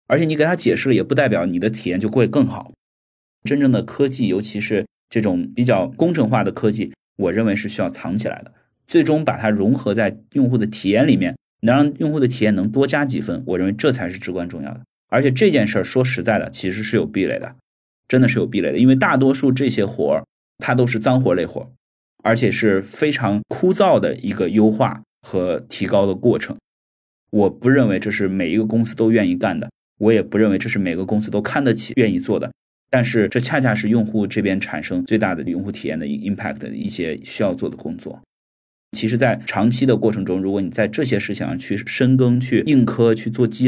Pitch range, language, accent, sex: 100-125 Hz, Chinese, native, male